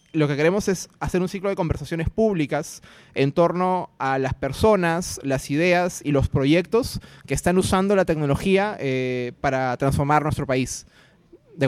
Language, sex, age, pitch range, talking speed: Spanish, male, 20-39, 135-175 Hz, 160 wpm